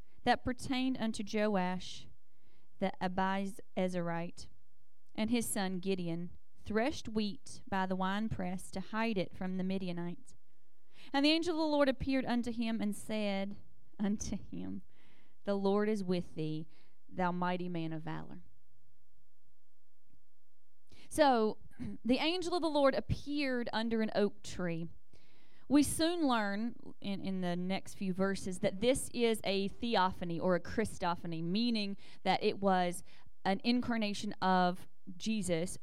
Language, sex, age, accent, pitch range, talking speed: English, female, 30-49, American, 170-220 Hz, 135 wpm